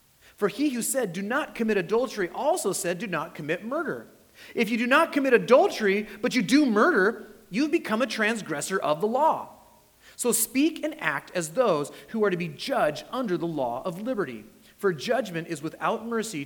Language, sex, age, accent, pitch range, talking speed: English, male, 30-49, American, 135-195 Hz, 190 wpm